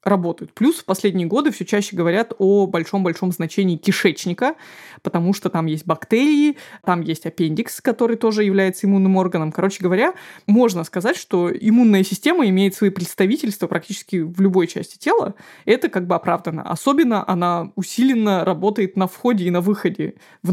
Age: 20-39